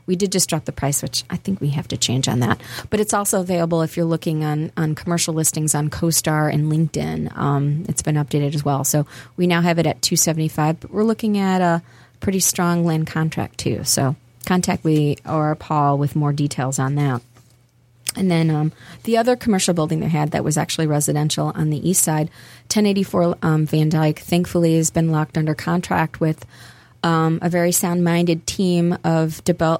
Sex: female